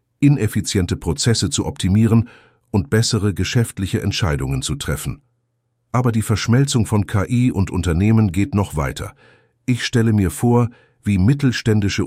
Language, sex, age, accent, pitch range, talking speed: German, male, 50-69, German, 85-120 Hz, 130 wpm